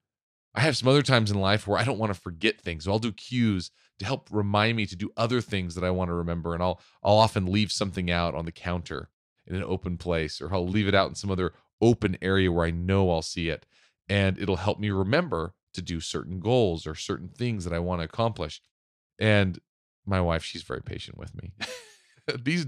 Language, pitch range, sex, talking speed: English, 85-115 Hz, male, 230 wpm